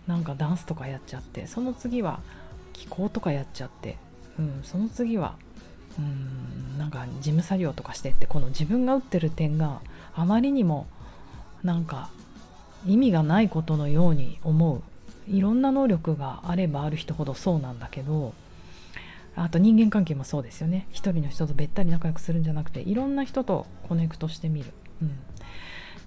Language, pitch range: Japanese, 140-190 Hz